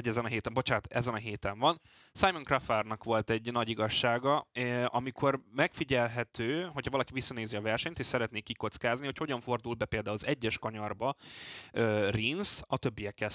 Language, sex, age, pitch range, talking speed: Hungarian, male, 20-39, 110-135 Hz, 155 wpm